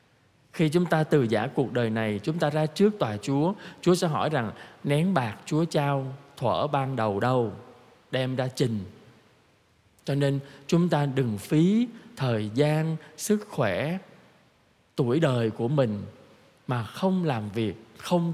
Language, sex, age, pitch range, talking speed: Vietnamese, male, 20-39, 120-155 Hz, 155 wpm